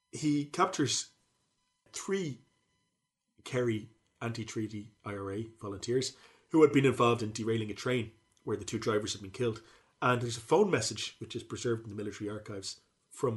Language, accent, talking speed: English, Irish, 155 wpm